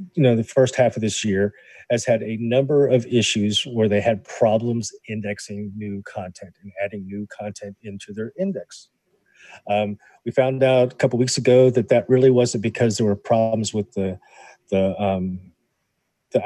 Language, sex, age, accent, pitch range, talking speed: English, male, 40-59, American, 105-130 Hz, 180 wpm